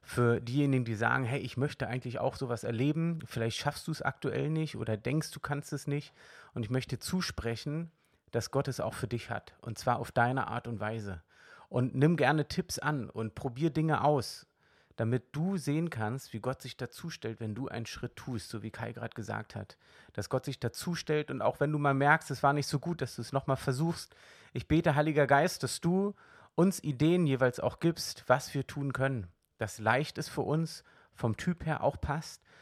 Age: 30-49